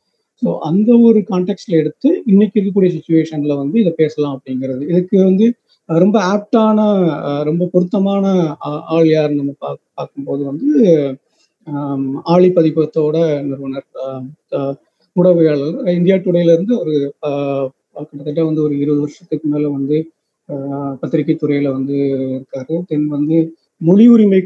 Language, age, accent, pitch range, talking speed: Tamil, 30-49, native, 145-180 Hz, 115 wpm